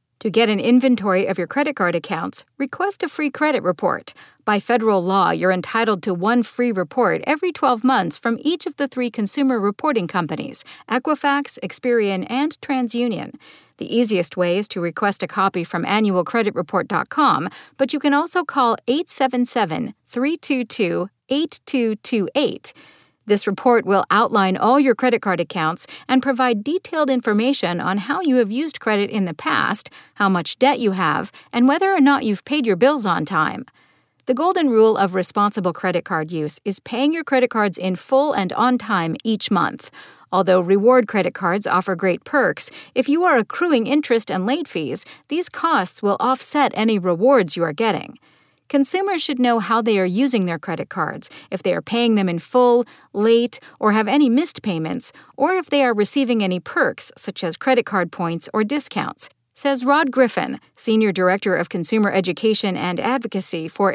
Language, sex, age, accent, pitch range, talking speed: English, female, 50-69, American, 195-270 Hz, 170 wpm